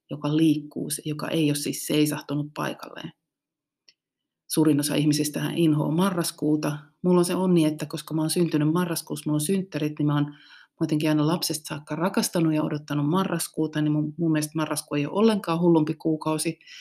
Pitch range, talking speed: 150-175 Hz, 165 wpm